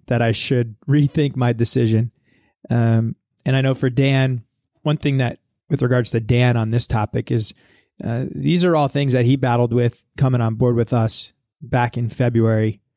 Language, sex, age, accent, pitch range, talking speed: English, male, 20-39, American, 120-135 Hz, 185 wpm